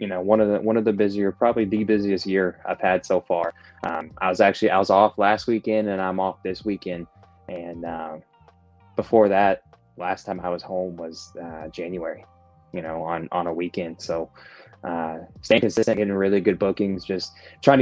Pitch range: 85-100 Hz